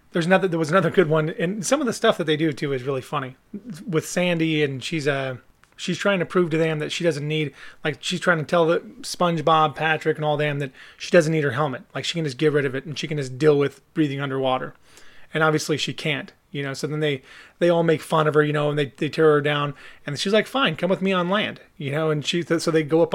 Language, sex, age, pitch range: English, male, 30-49, 140-165 Hz